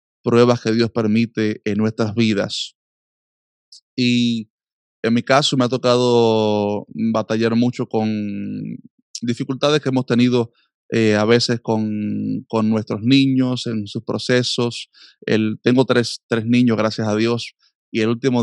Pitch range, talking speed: 110-120 Hz, 135 wpm